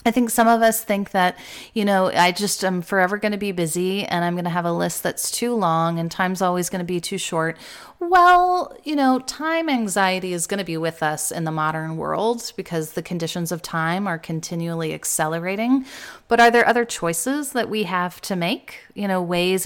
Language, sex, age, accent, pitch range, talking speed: English, female, 30-49, American, 165-220 Hz, 215 wpm